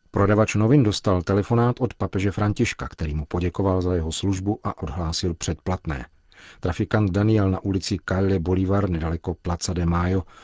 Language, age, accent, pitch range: Czech, 40-59, native, 85-105 Hz